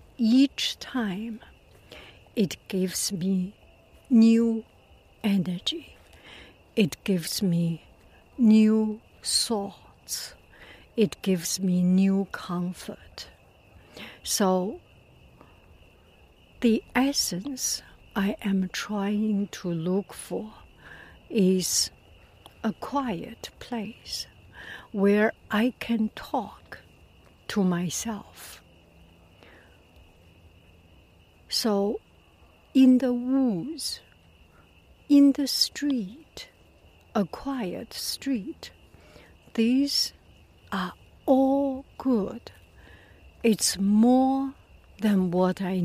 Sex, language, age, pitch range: female, English, 60-79, 180-245 Hz